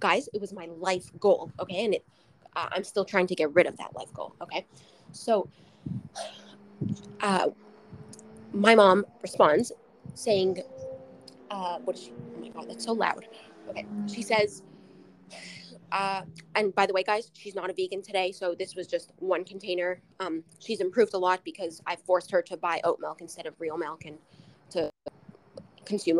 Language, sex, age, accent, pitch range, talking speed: English, female, 20-39, American, 175-215 Hz, 165 wpm